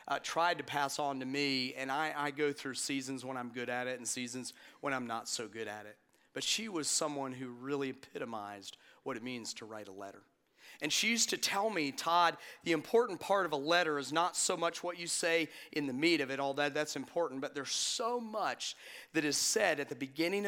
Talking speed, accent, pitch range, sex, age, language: 230 wpm, American, 135-175 Hz, male, 40-59, English